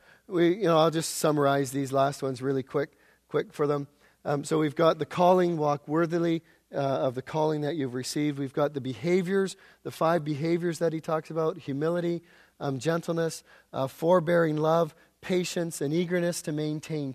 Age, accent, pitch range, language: 40-59, American, 150-200 Hz, English